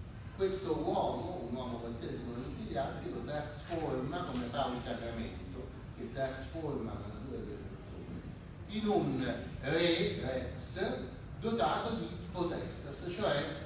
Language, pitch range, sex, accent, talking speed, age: Italian, 115-180 Hz, male, native, 125 wpm, 40-59